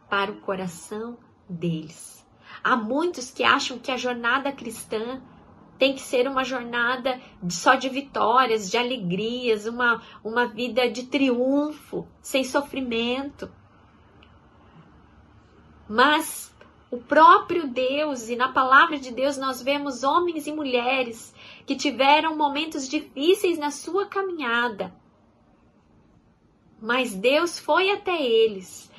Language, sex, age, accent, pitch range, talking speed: Portuguese, female, 20-39, Brazilian, 215-280 Hz, 115 wpm